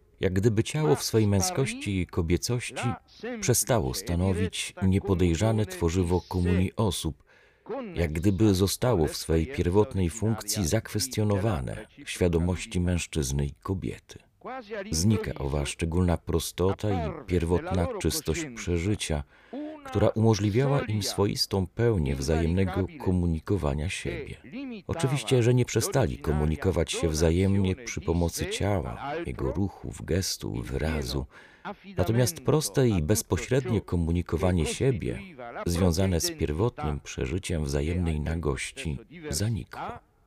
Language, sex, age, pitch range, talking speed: Polish, male, 40-59, 80-105 Hz, 105 wpm